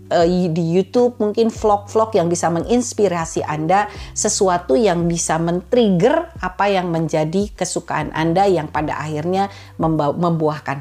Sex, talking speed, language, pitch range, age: female, 115 wpm, Indonesian, 145-200 Hz, 50-69